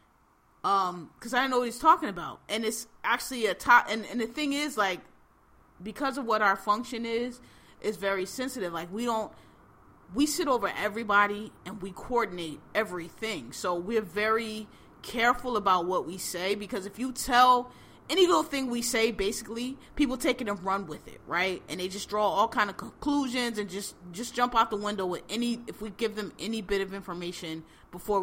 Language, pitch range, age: English, 195-255 Hz, 30-49